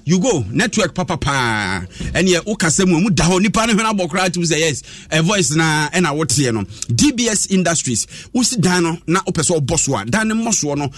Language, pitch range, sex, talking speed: English, 140-185 Hz, male, 175 wpm